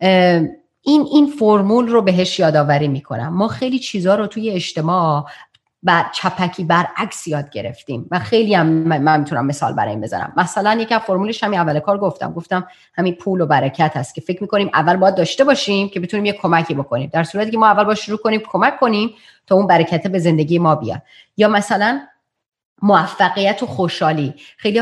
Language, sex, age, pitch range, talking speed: Persian, female, 30-49, 180-235 Hz, 180 wpm